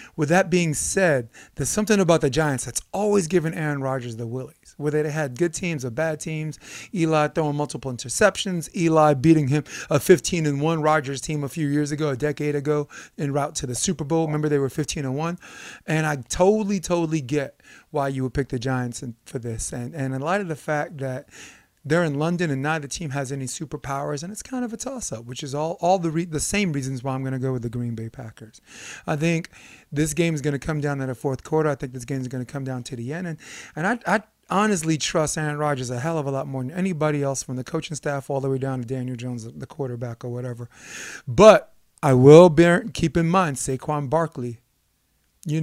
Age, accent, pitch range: 30-49, American, 135-165 Hz